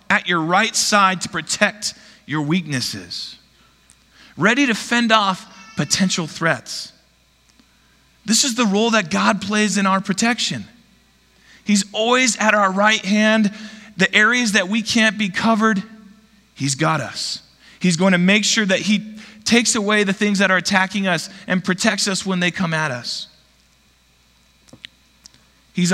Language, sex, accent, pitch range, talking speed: English, male, American, 135-210 Hz, 145 wpm